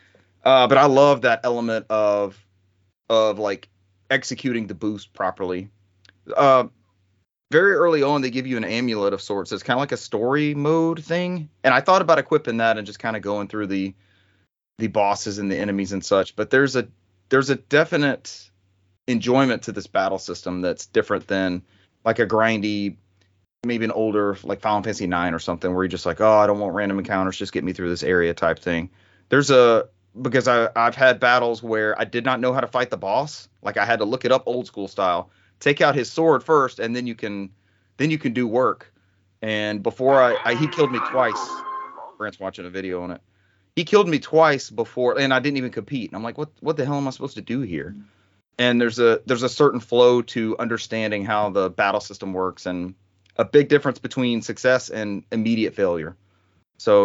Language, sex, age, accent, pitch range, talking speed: English, male, 30-49, American, 95-125 Hz, 210 wpm